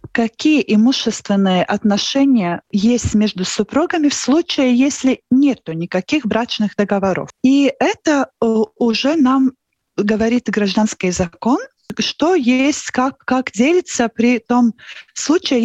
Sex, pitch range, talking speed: female, 210-280 Hz, 105 wpm